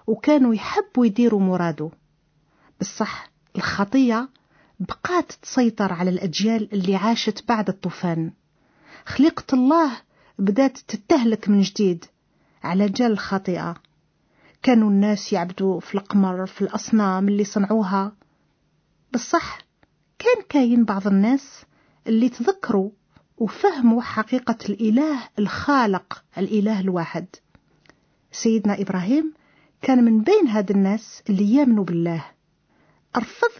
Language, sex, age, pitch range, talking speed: Italian, female, 50-69, 195-255 Hz, 100 wpm